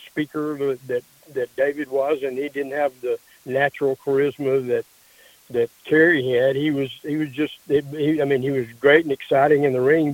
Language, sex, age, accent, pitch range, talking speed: English, male, 60-79, American, 130-160 Hz, 190 wpm